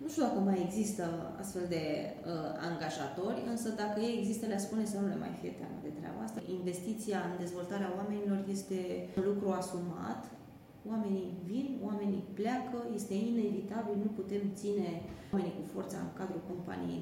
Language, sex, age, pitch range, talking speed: Romanian, female, 20-39, 185-225 Hz, 165 wpm